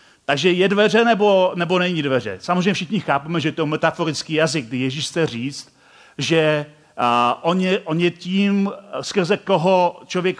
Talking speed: 155 wpm